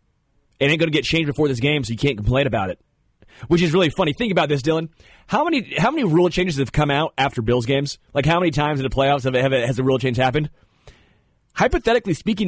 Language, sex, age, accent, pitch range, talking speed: English, male, 30-49, American, 105-145 Hz, 245 wpm